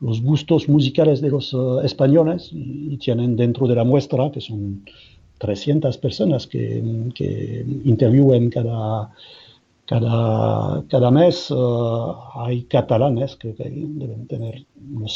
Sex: male